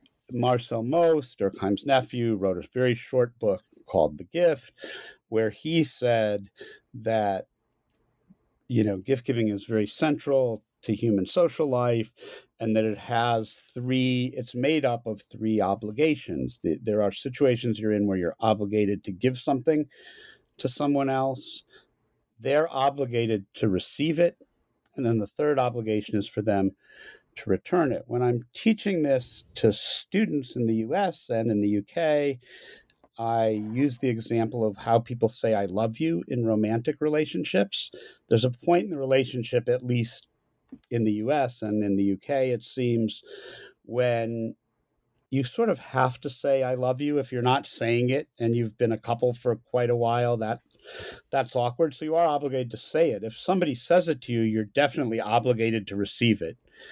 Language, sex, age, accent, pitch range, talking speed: English, male, 50-69, American, 110-135 Hz, 165 wpm